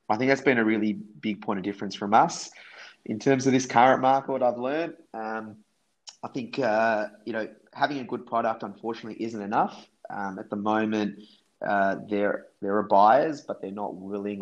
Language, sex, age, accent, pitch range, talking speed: English, male, 20-39, Australian, 100-125 Hz, 190 wpm